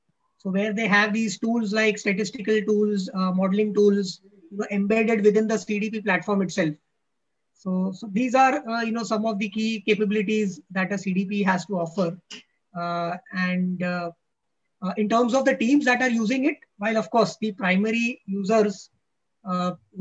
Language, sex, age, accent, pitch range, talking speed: English, female, 20-39, Indian, 185-215 Hz, 175 wpm